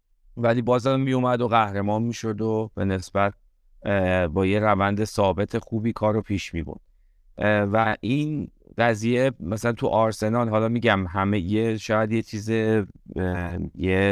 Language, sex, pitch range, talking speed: Persian, male, 95-115 Hz, 140 wpm